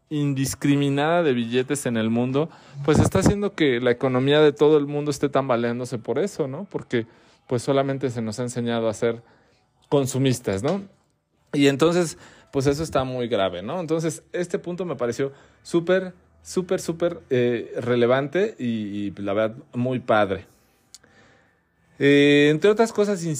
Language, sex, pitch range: Spanish, male, 120-150 Hz